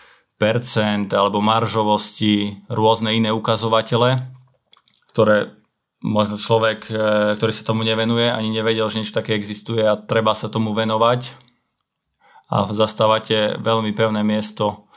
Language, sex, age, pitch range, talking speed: Slovak, male, 20-39, 105-115 Hz, 115 wpm